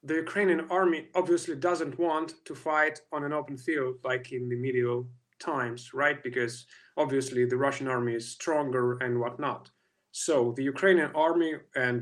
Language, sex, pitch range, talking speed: English, male, 130-160 Hz, 160 wpm